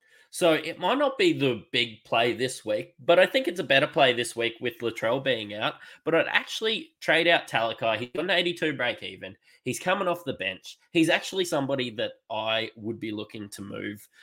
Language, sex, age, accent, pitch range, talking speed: English, male, 20-39, Australian, 120-175 Hz, 205 wpm